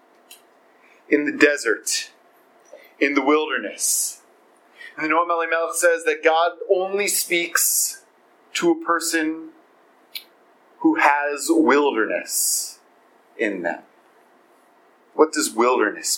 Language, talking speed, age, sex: English, 95 wpm, 30-49, male